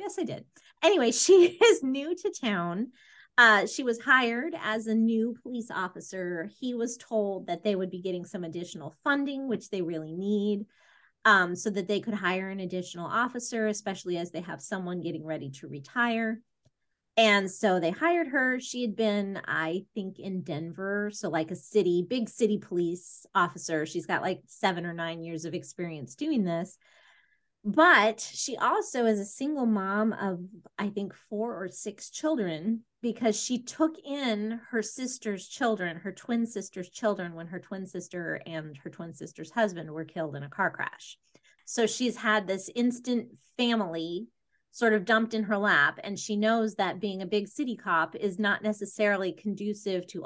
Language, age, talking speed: English, 30-49, 175 wpm